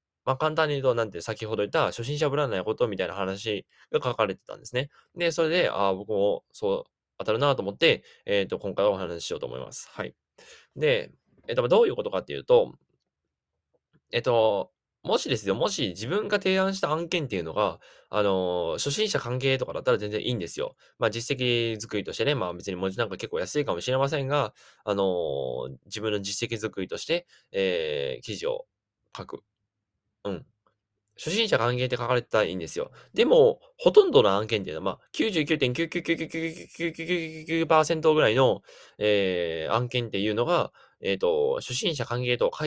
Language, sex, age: Japanese, male, 20-39